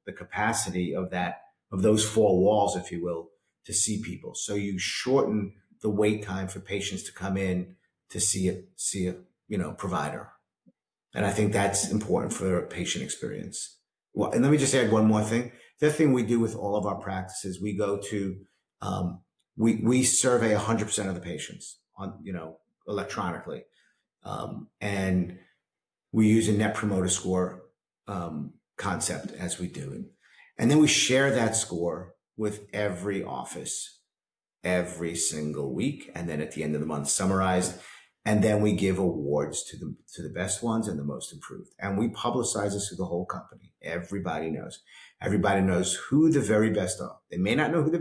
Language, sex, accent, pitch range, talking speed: English, male, American, 90-110 Hz, 185 wpm